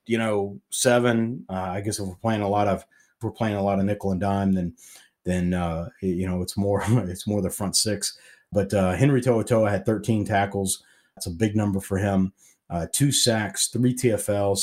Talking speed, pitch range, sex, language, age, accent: 220 wpm, 95-110 Hz, male, English, 40-59, American